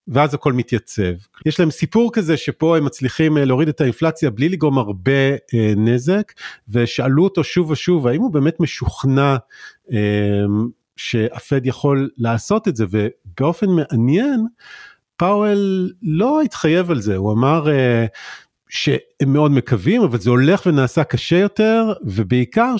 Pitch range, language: 115-165 Hz, Hebrew